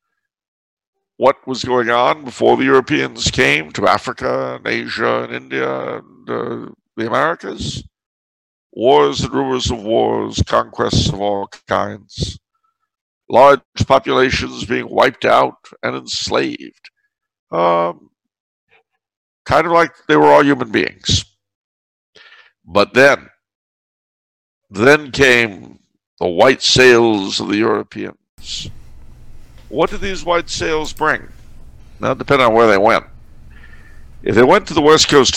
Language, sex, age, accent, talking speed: English, male, 60-79, American, 125 wpm